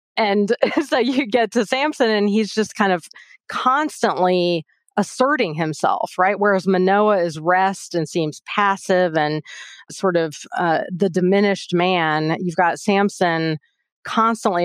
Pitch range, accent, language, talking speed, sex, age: 165-200 Hz, American, English, 135 wpm, female, 30-49